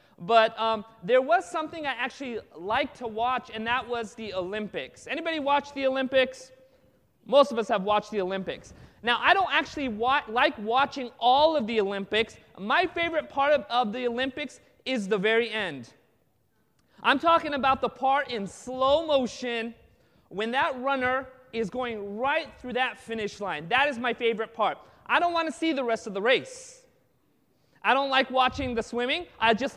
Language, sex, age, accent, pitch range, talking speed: English, male, 30-49, American, 230-280 Hz, 175 wpm